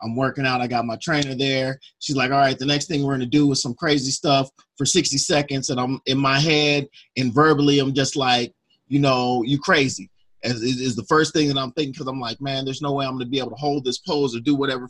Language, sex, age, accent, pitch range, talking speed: English, male, 30-49, American, 120-145 Hz, 270 wpm